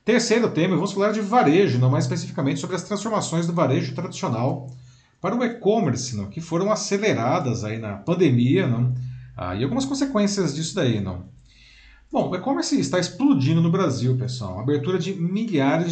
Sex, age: male, 40-59